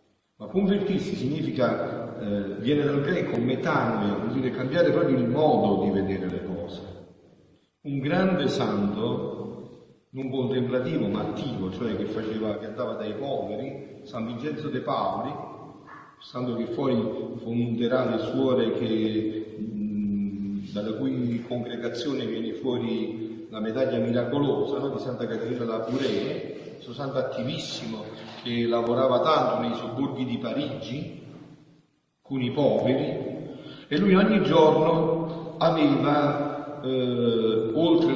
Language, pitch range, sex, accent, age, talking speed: Italian, 105-145 Hz, male, native, 40-59, 120 wpm